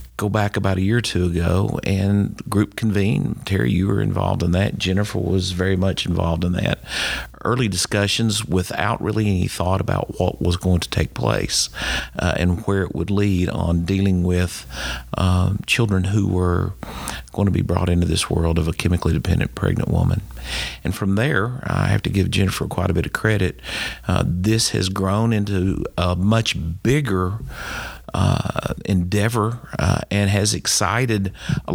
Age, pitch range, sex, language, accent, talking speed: 50-69, 90-110 Hz, male, English, American, 170 wpm